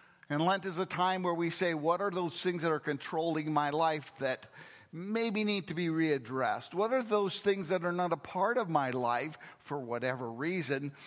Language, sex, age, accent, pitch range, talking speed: English, male, 50-69, American, 140-190 Hz, 205 wpm